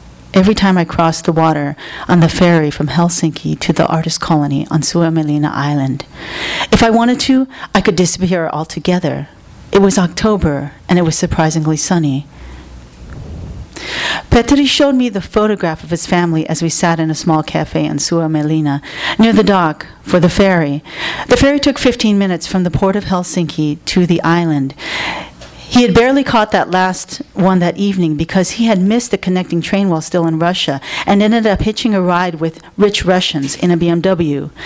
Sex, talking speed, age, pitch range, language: female, 180 wpm, 40-59, 160-200 Hz, English